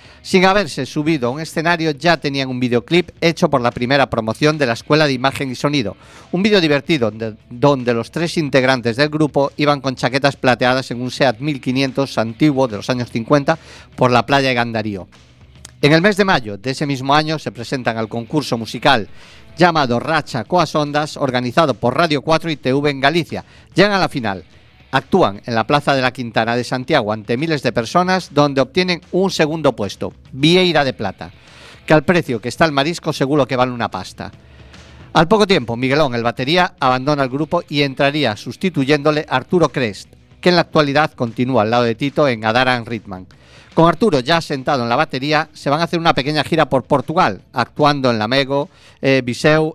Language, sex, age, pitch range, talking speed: Spanish, male, 50-69, 120-155 Hz, 195 wpm